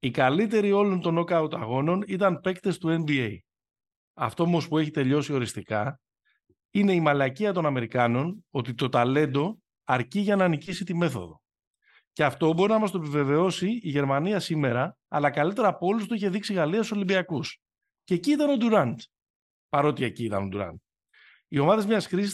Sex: male